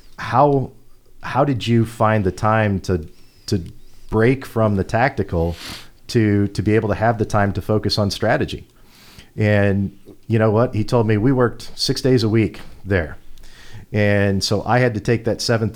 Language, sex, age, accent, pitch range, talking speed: English, male, 40-59, American, 95-115 Hz, 180 wpm